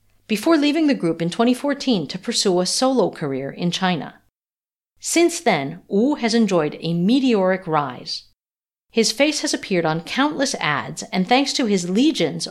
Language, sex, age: English, female, 50-69